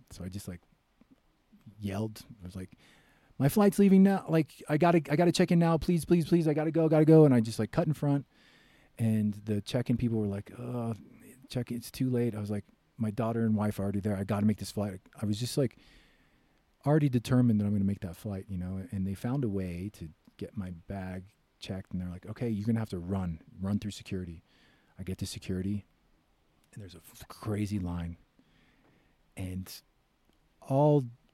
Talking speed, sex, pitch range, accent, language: 225 wpm, male, 95-125 Hz, American, English